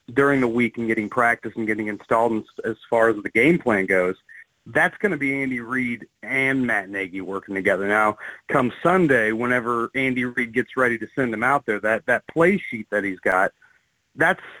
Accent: American